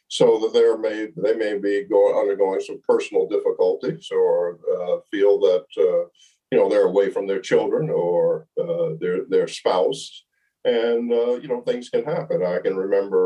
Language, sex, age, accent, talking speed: English, male, 50-69, American, 170 wpm